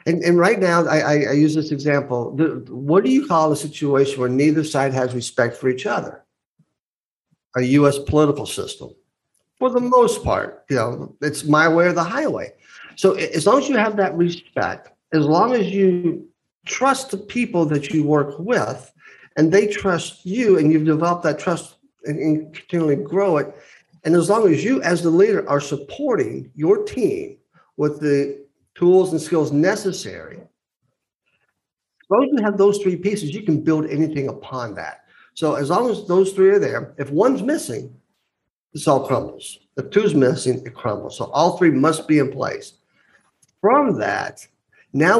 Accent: American